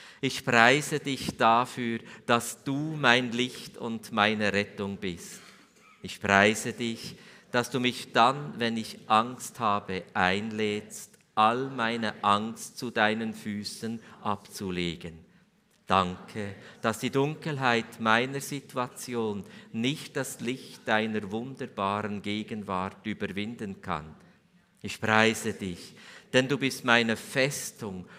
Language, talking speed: German, 115 wpm